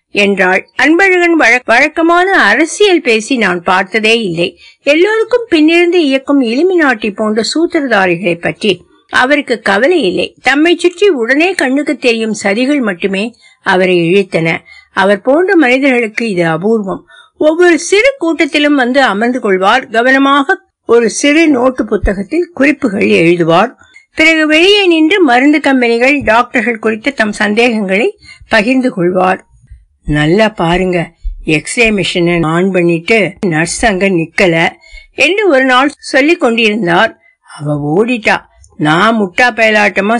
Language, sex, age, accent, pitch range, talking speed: Tamil, female, 60-79, native, 195-285 Hz, 95 wpm